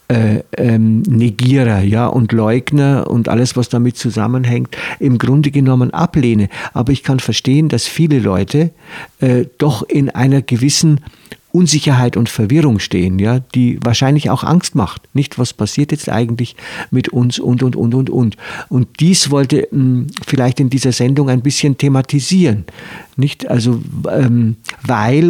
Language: German